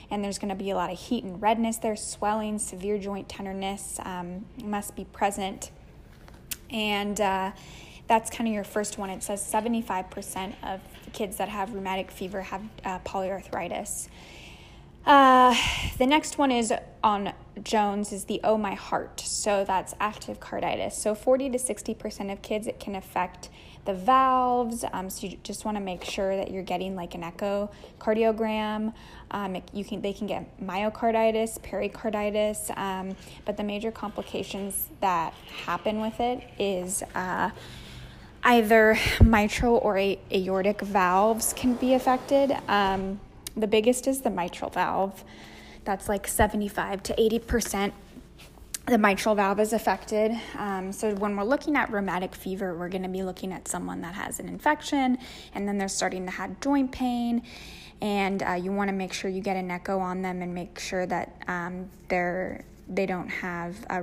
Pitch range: 190-220 Hz